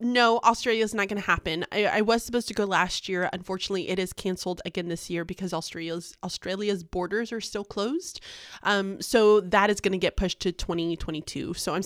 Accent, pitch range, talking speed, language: American, 180-215 Hz, 205 wpm, English